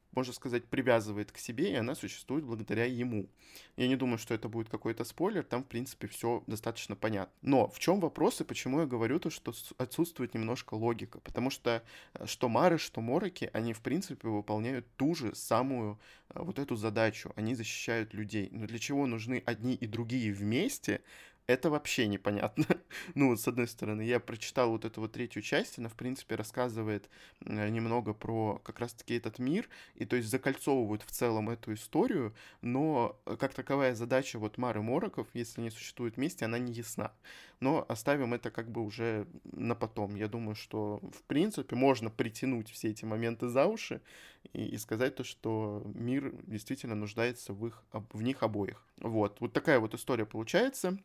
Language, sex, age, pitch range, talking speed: Russian, male, 20-39, 110-130 Hz, 175 wpm